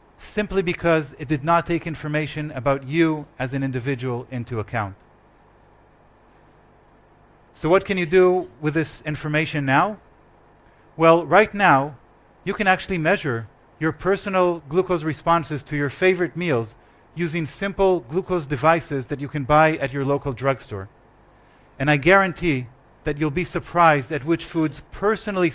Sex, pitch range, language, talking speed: male, 135-165 Hz, English, 145 wpm